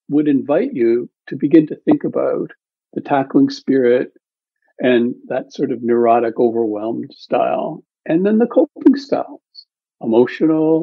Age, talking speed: 60-79, 135 wpm